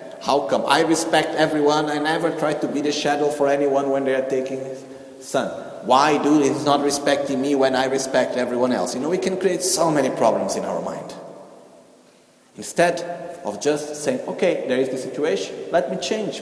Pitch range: 140-200 Hz